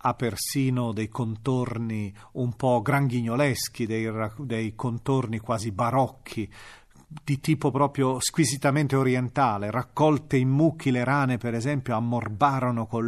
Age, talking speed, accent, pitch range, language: 40-59, 120 wpm, native, 115-155 Hz, Italian